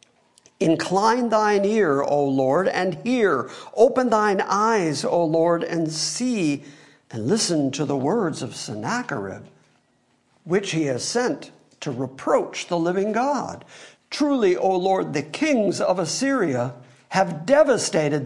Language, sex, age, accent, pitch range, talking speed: English, male, 50-69, American, 145-205 Hz, 130 wpm